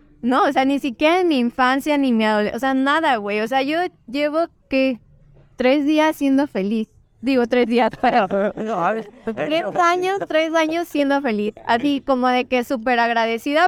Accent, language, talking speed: Mexican, Spanish, 175 wpm